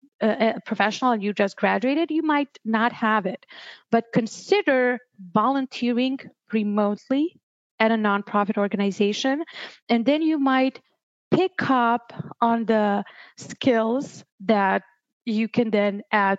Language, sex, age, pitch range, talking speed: English, female, 30-49, 205-255 Hz, 120 wpm